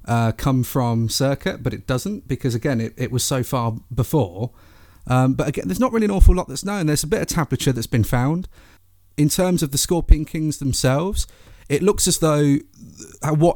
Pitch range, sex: 115-160 Hz, male